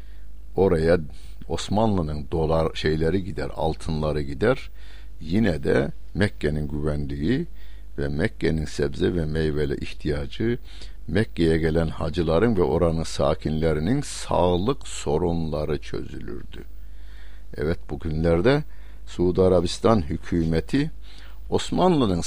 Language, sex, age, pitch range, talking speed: Turkish, male, 60-79, 75-100 Hz, 85 wpm